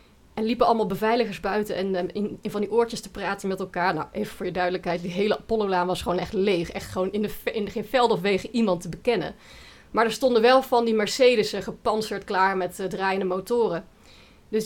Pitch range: 180-220 Hz